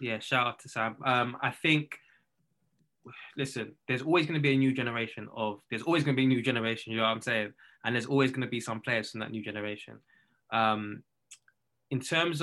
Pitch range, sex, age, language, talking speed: 115-140 Hz, male, 10-29, English, 220 wpm